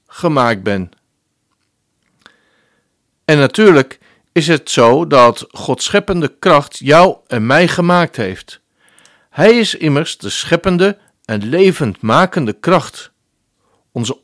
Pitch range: 125-180 Hz